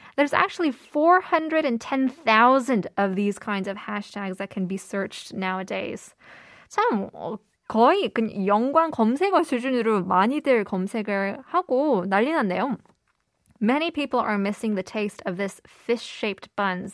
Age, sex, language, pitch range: 20-39, female, Korean, 195-245 Hz